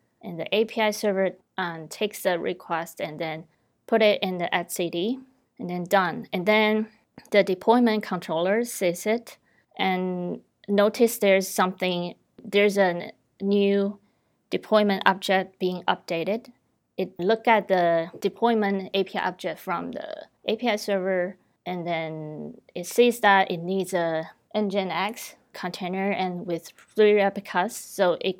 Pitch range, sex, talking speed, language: 175-205 Hz, female, 135 wpm, English